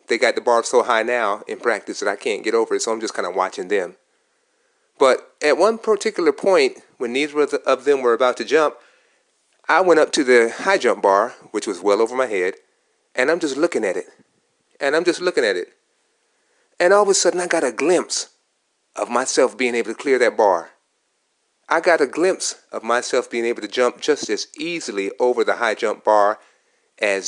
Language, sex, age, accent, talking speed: English, male, 30-49, American, 215 wpm